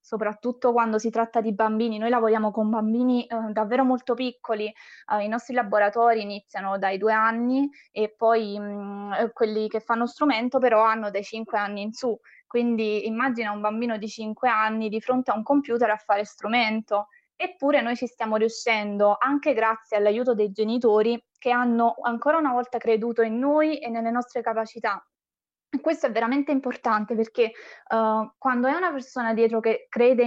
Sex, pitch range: female, 215-245 Hz